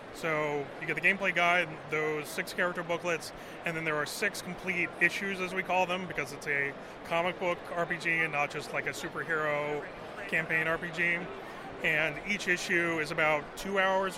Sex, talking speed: male, 180 wpm